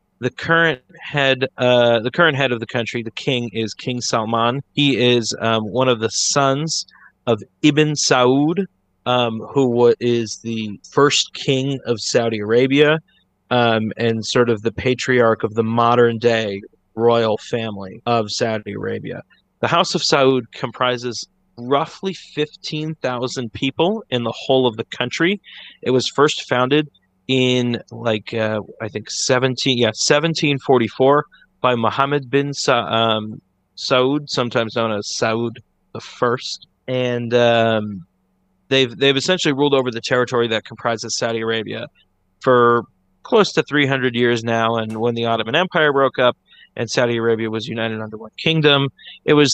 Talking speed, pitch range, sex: 150 wpm, 115-135 Hz, male